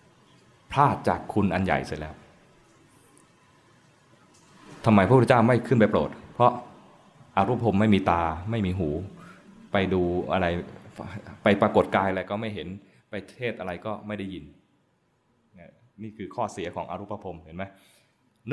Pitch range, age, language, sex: 100-120 Hz, 20-39, Thai, male